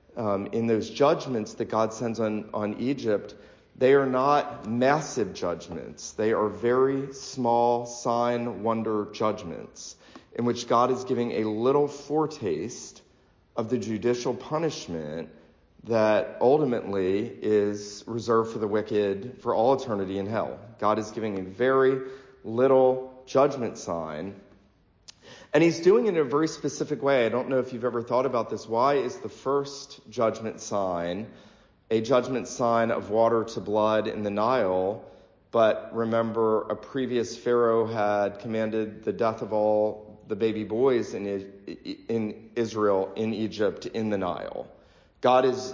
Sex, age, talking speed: male, 40-59, 145 wpm